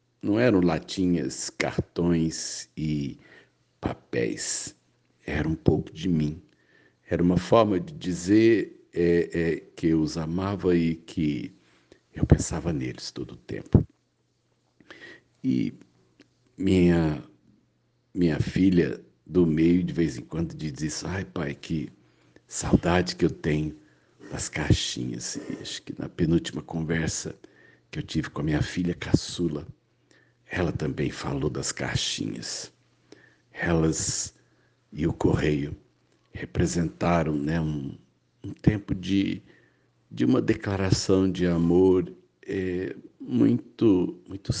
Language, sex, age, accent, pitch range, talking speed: Portuguese, male, 60-79, Brazilian, 80-95 Hz, 110 wpm